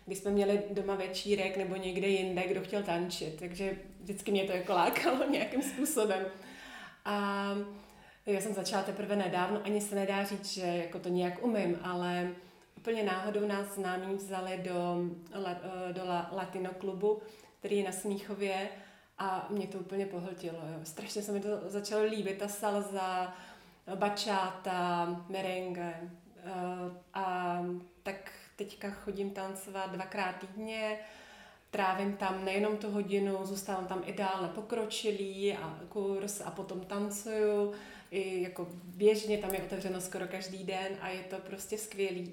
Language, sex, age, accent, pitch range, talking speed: Czech, female, 30-49, native, 185-205 Hz, 140 wpm